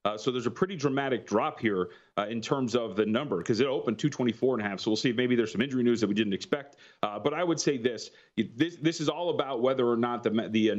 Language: English